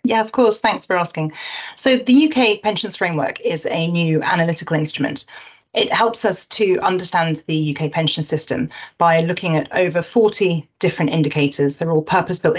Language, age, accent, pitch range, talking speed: English, 30-49, British, 155-205 Hz, 165 wpm